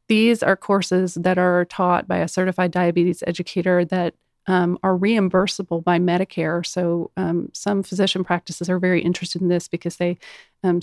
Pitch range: 175-190 Hz